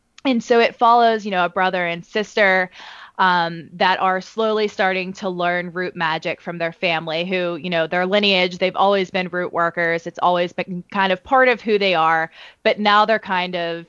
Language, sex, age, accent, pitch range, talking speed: English, female, 20-39, American, 180-215 Hz, 205 wpm